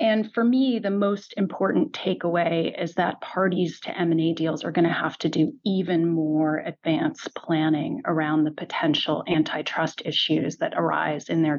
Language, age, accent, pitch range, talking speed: English, 30-49, American, 160-185 Hz, 165 wpm